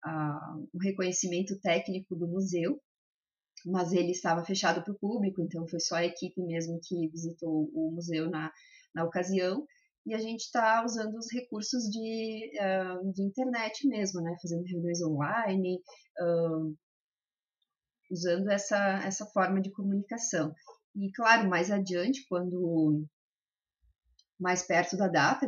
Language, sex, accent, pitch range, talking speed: Portuguese, female, Brazilian, 170-200 Hz, 140 wpm